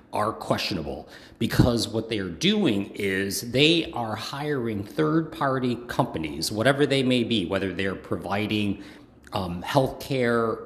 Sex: male